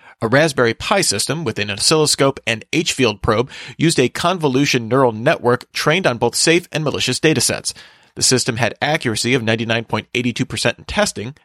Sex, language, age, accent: male, English, 40-59, American